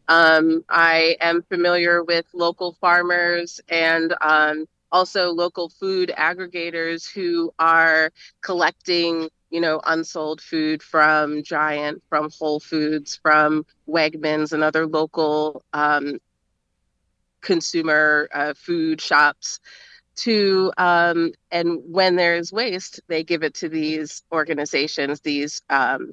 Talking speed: 115 wpm